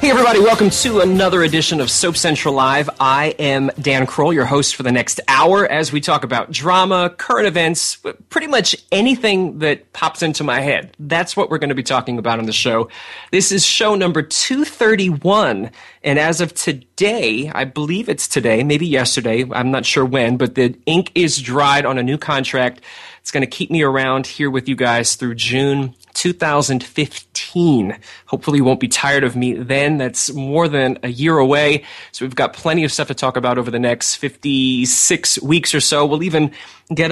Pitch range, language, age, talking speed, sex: 130-165 Hz, English, 30-49, 195 wpm, male